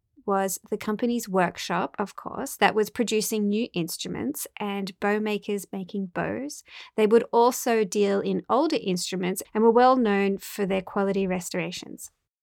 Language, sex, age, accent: English, female, 20-39, Australian